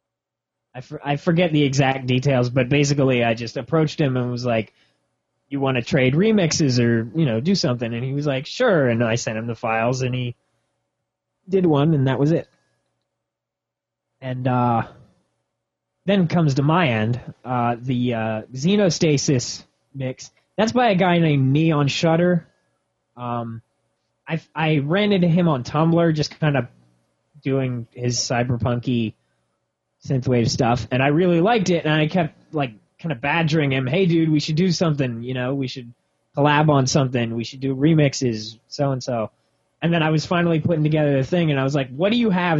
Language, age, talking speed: English, 20-39, 180 wpm